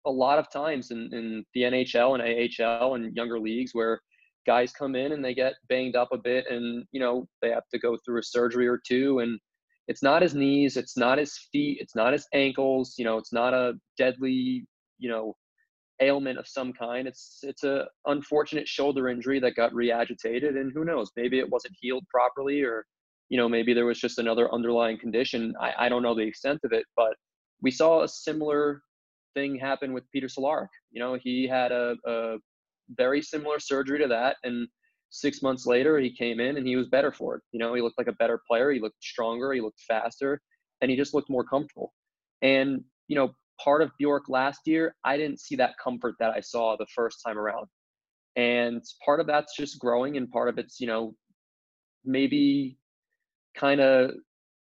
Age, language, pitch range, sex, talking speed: 20-39, English, 120-140 Hz, male, 205 wpm